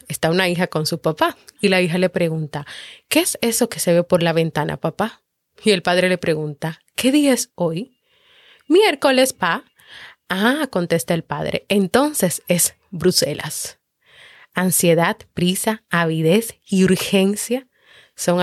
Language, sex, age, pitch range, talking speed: Spanish, female, 20-39, 180-240 Hz, 145 wpm